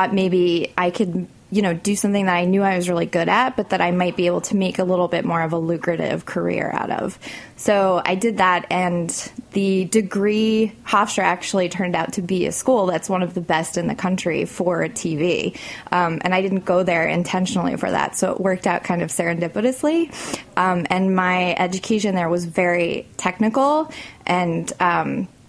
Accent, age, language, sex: American, 20-39, English, female